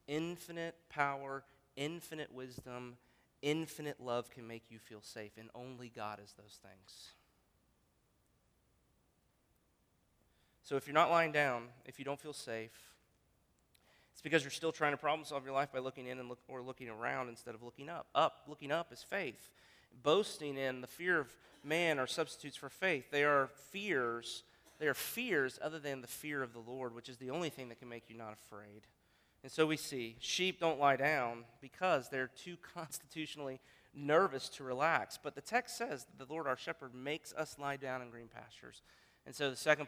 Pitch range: 125-150 Hz